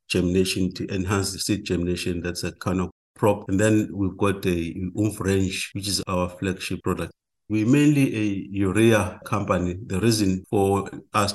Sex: male